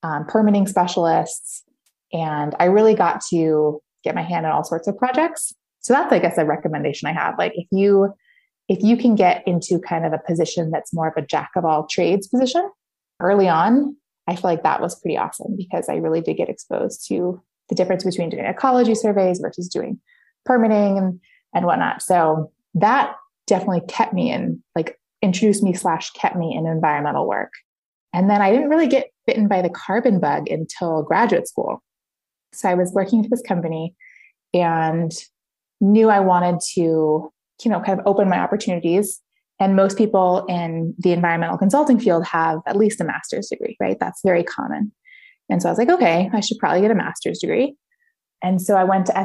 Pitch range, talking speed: 170-225 Hz, 190 wpm